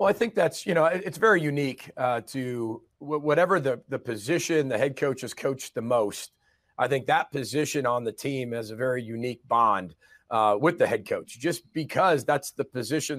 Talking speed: 205 wpm